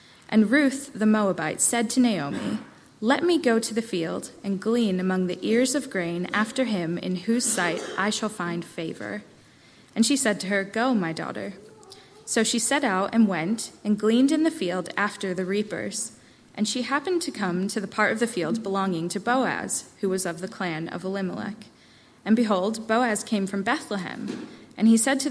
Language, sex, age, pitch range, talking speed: English, female, 20-39, 185-230 Hz, 195 wpm